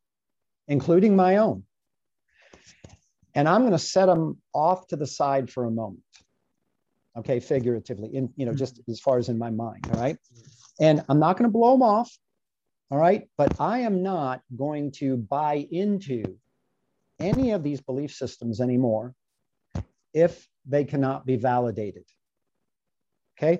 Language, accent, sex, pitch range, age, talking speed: English, American, male, 125-160 Hz, 50-69, 150 wpm